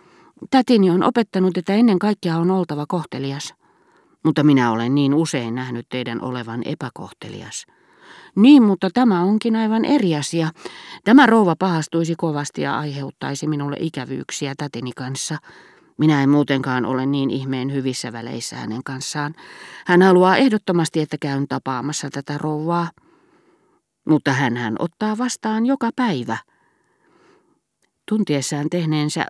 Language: Finnish